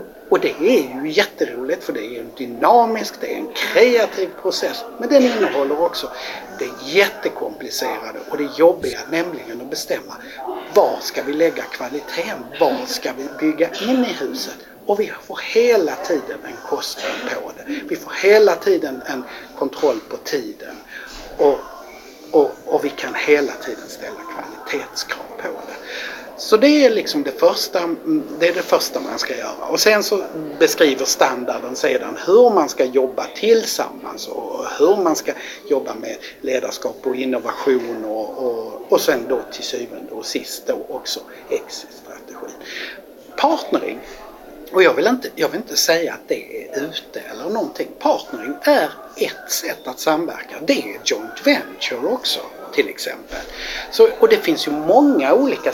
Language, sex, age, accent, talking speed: Swedish, male, 60-79, native, 160 wpm